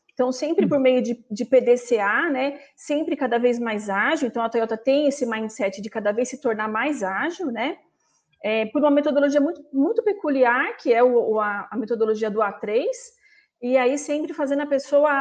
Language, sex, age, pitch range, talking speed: Portuguese, female, 40-59, 225-295 Hz, 190 wpm